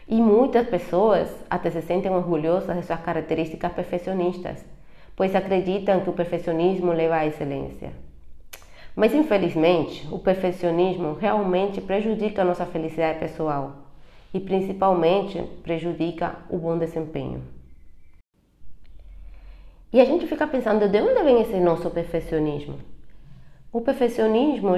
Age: 20-39